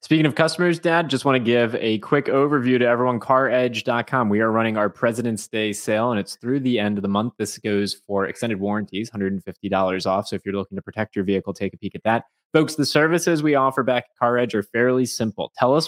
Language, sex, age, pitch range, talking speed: English, male, 20-39, 100-130 Hz, 235 wpm